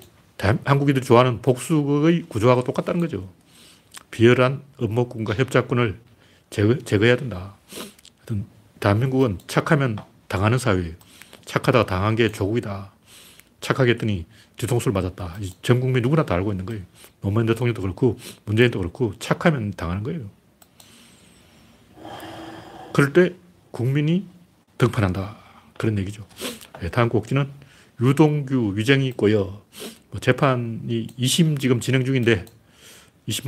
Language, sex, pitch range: Korean, male, 105-135 Hz